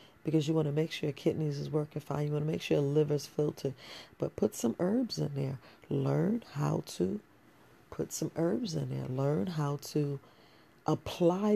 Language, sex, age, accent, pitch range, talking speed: English, female, 40-59, American, 135-165 Hz, 190 wpm